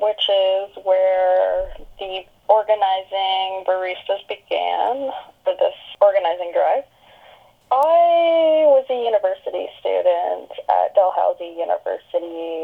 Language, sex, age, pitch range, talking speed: English, female, 10-29, 185-280 Hz, 90 wpm